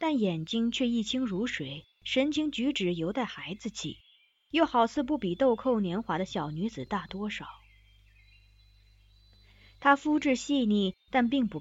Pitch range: 160-250 Hz